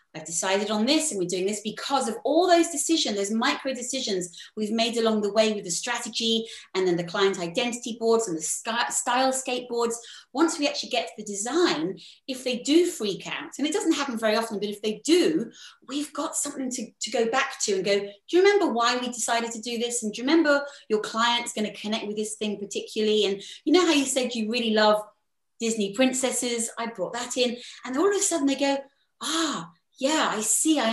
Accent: British